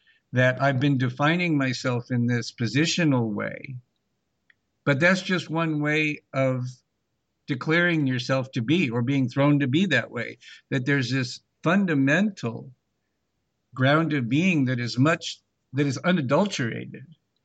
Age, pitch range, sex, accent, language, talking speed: 60-79, 125-150 Hz, male, American, English, 135 wpm